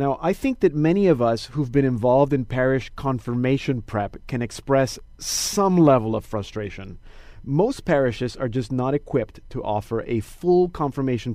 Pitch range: 115-155 Hz